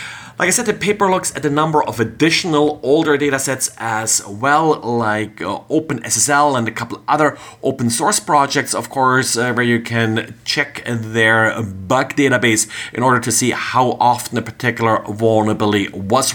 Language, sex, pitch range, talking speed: English, male, 115-150 Hz, 165 wpm